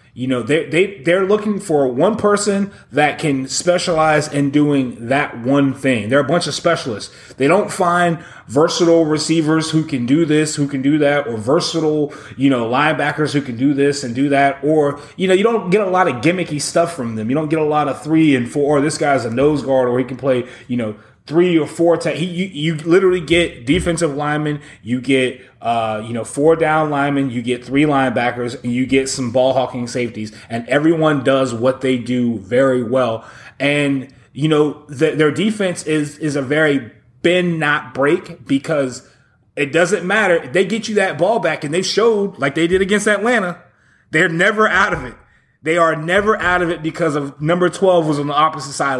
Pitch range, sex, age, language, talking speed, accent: 135-170 Hz, male, 30-49, English, 205 wpm, American